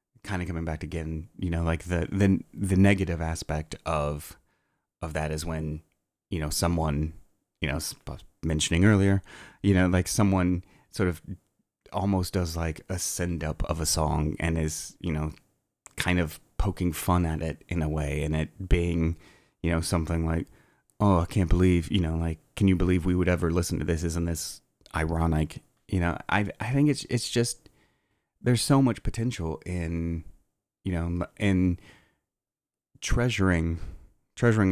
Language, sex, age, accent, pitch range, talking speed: English, male, 30-49, American, 80-95 Hz, 170 wpm